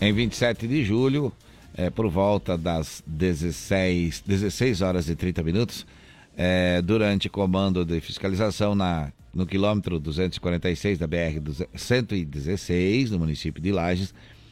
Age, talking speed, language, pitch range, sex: 60-79, 125 wpm, Portuguese, 85-105 Hz, male